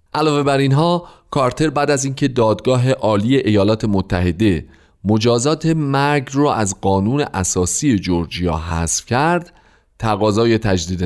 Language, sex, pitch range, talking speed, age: Persian, male, 95-150 Hz, 120 wpm, 40-59